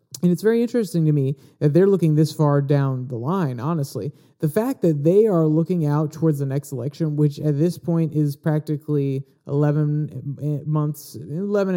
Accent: American